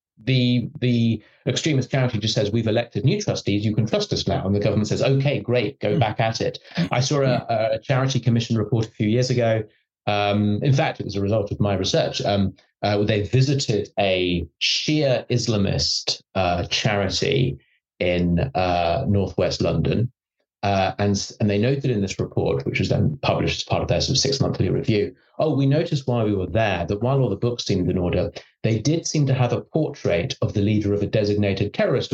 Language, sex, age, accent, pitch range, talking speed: English, male, 30-49, British, 100-130 Hz, 200 wpm